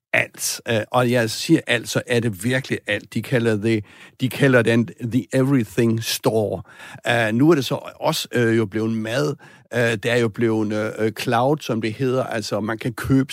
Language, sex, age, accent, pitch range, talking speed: Danish, male, 60-79, native, 115-145 Hz, 190 wpm